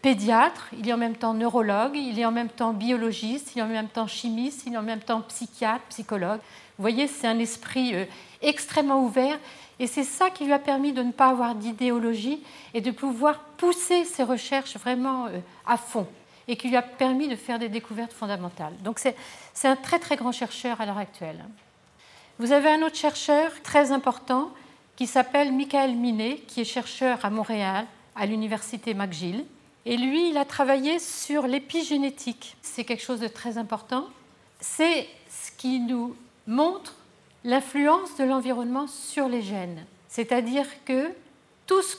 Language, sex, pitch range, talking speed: French, female, 225-280 Hz, 175 wpm